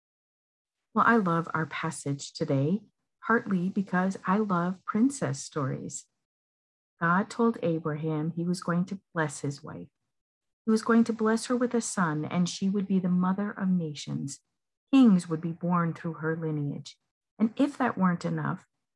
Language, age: English, 50-69